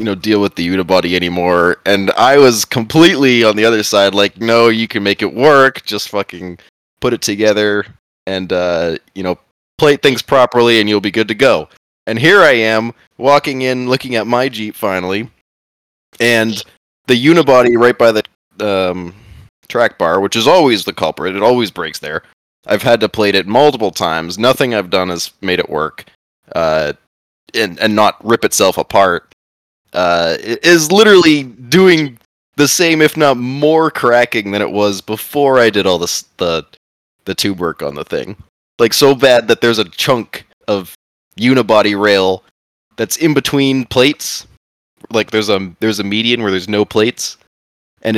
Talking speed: 175 wpm